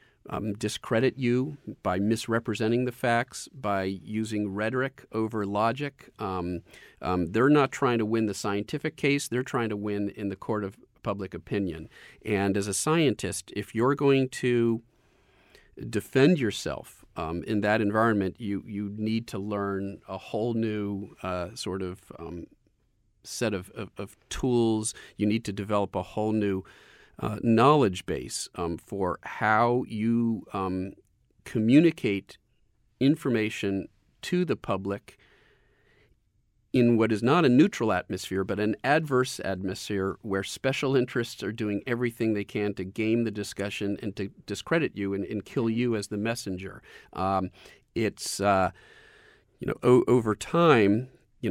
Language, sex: English, male